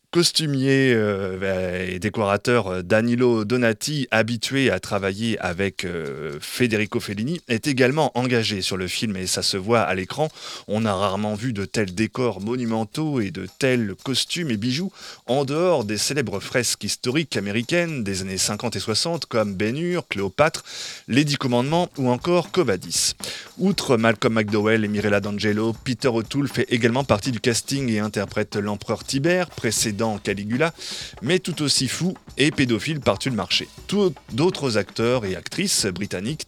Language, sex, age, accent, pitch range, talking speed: French, male, 20-39, French, 105-130 Hz, 150 wpm